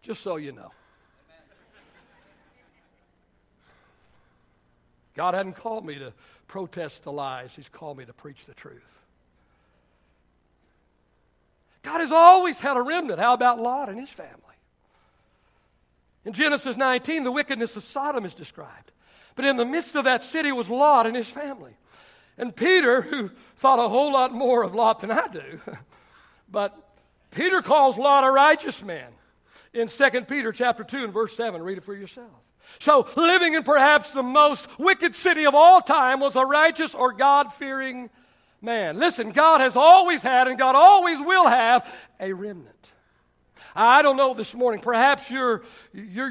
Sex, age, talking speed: male, 60-79, 155 wpm